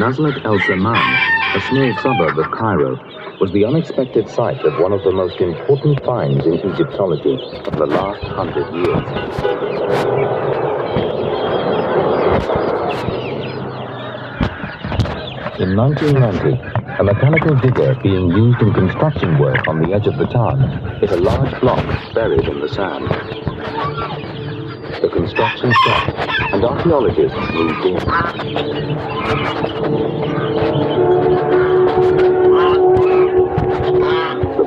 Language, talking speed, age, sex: English, 95 wpm, 60-79, male